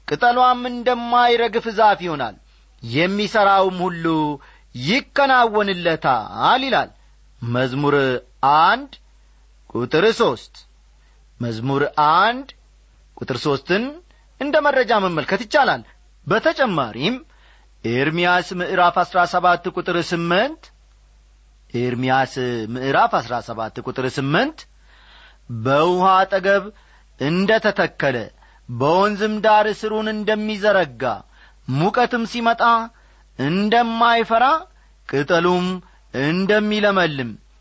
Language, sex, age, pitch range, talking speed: Amharic, male, 40-59, 130-215 Hz, 70 wpm